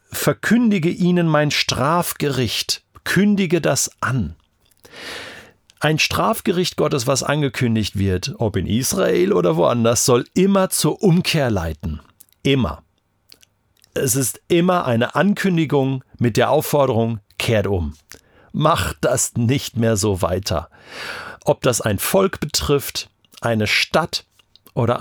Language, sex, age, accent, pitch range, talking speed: German, male, 50-69, German, 100-140 Hz, 115 wpm